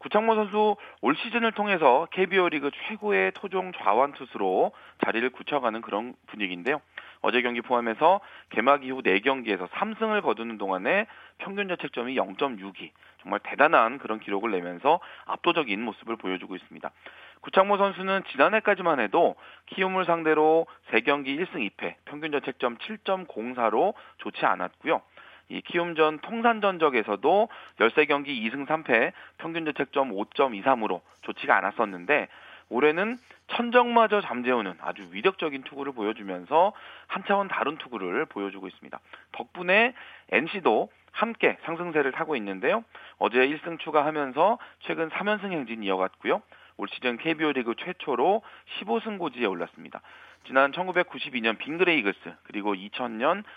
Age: 40-59